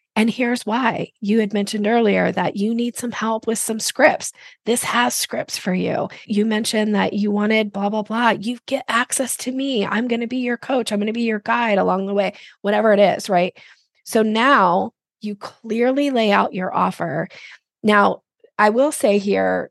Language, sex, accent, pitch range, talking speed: English, female, American, 200-240 Hz, 200 wpm